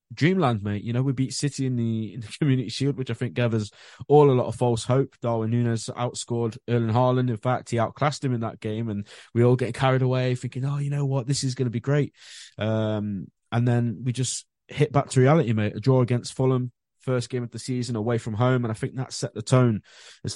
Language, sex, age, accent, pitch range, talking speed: English, male, 20-39, British, 110-130 Hz, 245 wpm